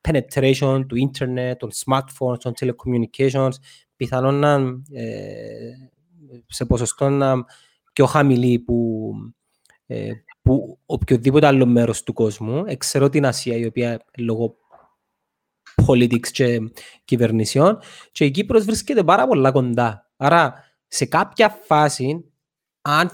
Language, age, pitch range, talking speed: Greek, 20-39, 125-175 Hz, 95 wpm